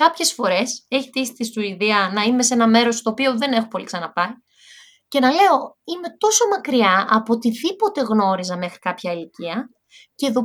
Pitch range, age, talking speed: 225-290 Hz, 20-39, 180 wpm